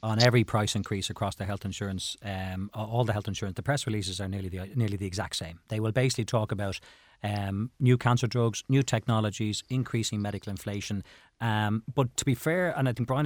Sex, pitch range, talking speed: male, 105-125 Hz, 210 wpm